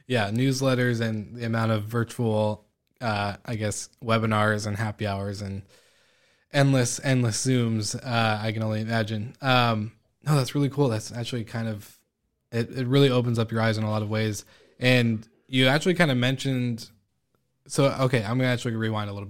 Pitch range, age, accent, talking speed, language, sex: 110-130 Hz, 20-39, American, 185 wpm, English, male